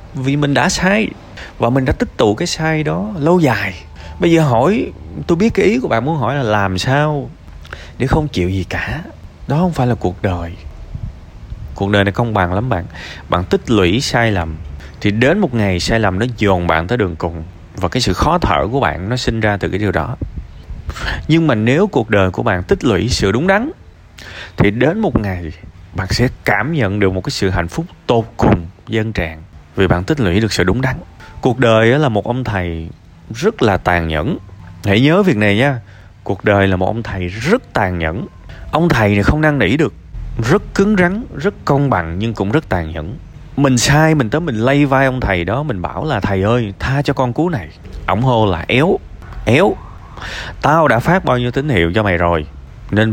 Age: 20-39